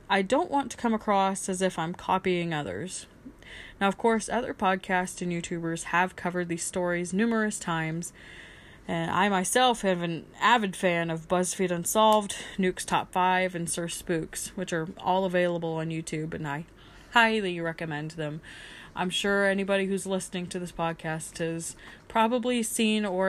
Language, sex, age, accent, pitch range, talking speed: English, female, 20-39, American, 170-200 Hz, 160 wpm